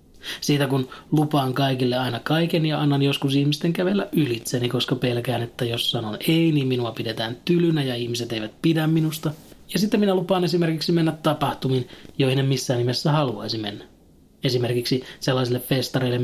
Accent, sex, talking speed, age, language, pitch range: native, male, 155 wpm, 20-39, Finnish, 125-155 Hz